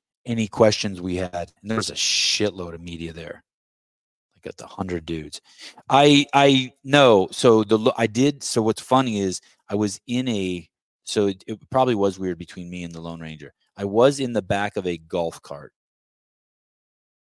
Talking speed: 180 wpm